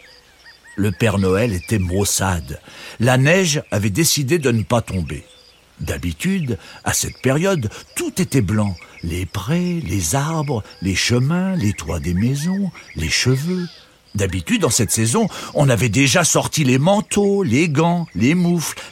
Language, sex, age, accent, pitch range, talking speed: French, male, 60-79, French, 95-155 Hz, 145 wpm